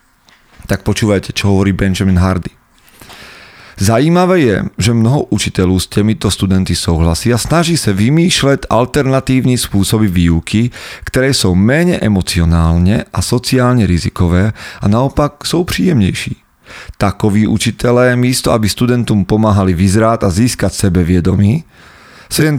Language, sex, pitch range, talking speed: Slovak, male, 95-120 Hz, 120 wpm